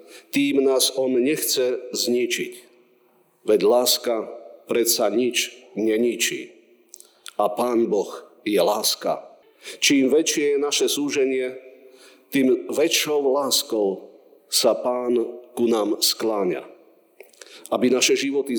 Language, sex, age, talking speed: Slovak, male, 50-69, 100 wpm